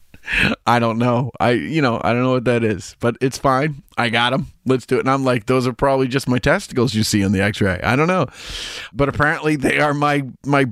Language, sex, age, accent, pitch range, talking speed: English, male, 30-49, American, 105-135 Hz, 245 wpm